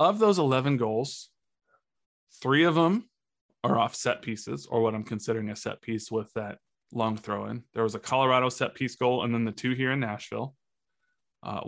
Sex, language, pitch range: male, English, 110-145 Hz